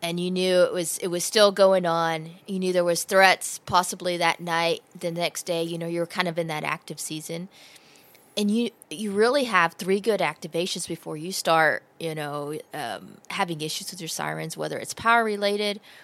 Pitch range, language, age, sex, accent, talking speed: 165-190 Hz, English, 20-39, female, American, 195 wpm